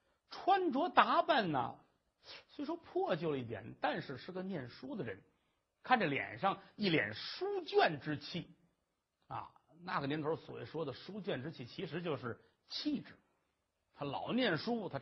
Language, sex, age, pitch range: Chinese, male, 50-69, 145-240 Hz